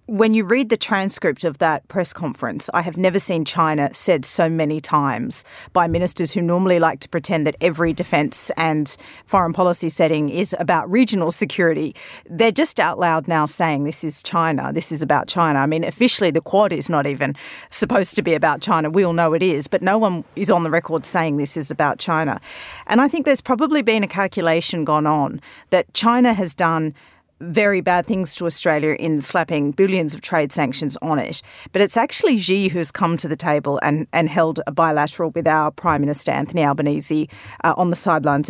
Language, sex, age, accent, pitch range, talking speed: English, female, 40-59, Australian, 155-195 Hz, 205 wpm